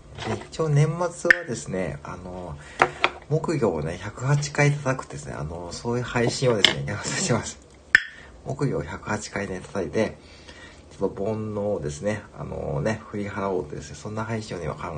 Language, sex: Japanese, male